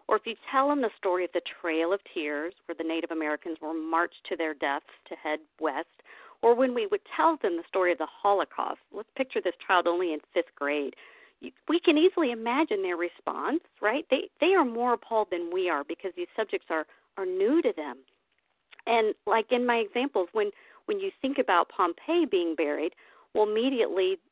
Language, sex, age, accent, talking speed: English, female, 50-69, American, 200 wpm